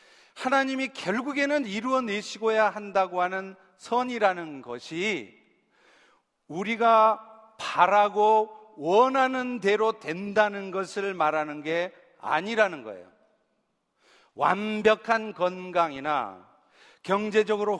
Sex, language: male, Korean